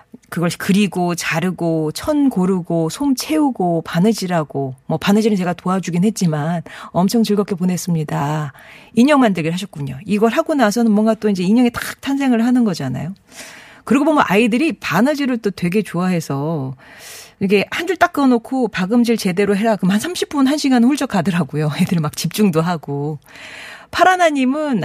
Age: 40-59